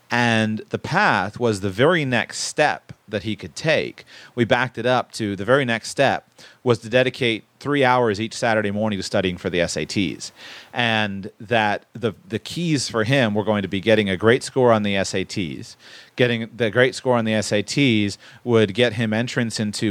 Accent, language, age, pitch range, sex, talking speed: American, English, 30-49, 100-120 Hz, male, 195 wpm